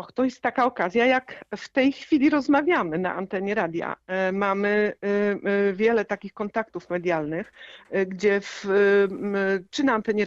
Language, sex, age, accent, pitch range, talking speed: Polish, female, 50-69, native, 180-225 Hz, 125 wpm